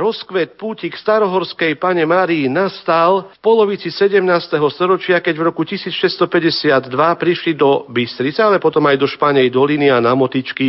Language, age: Slovak, 50-69